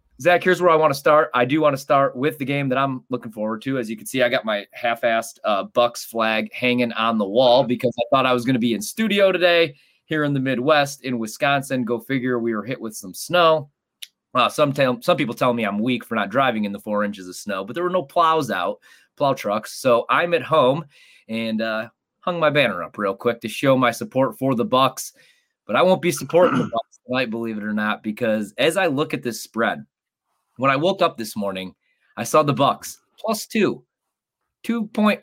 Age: 20-39